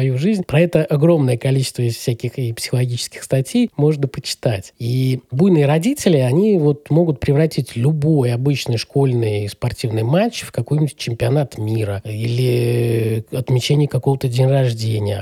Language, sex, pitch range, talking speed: Russian, male, 120-150 Hz, 120 wpm